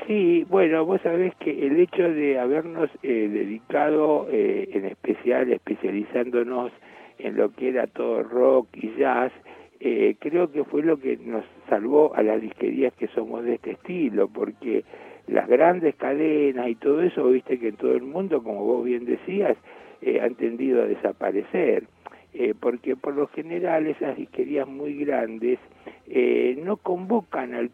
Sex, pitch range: male, 140-230 Hz